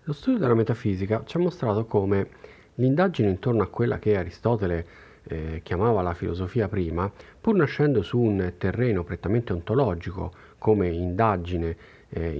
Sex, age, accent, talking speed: male, 40-59, native, 140 wpm